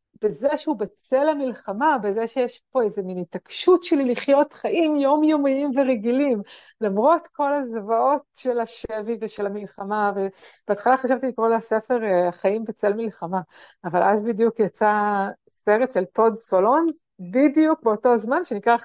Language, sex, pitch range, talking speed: Hebrew, female, 195-260 Hz, 130 wpm